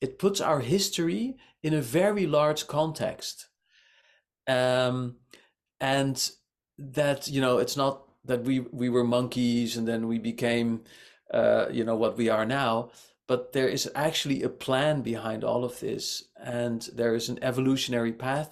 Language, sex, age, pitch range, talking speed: German, male, 40-59, 125-165 Hz, 155 wpm